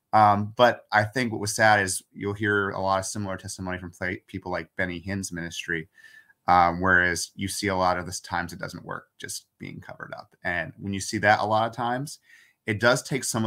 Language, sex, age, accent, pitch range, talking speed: English, male, 30-49, American, 95-115 Hz, 225 wpm